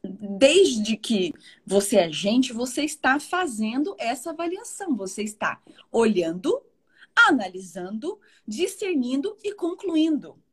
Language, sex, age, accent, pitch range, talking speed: Portuguese, female, 30-49, Brazilian, 220-305 Hz, 95 wpm